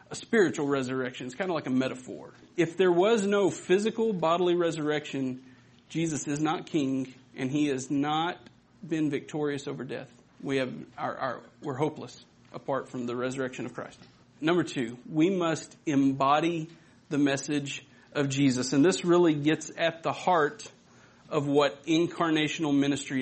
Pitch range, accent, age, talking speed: 135-170 Hz, American, 40-59, 150 wpm